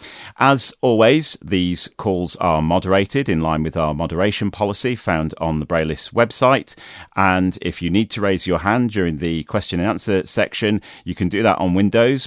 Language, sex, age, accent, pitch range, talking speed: English, male, 40-59, British, 80-105 Hz, 180 wpm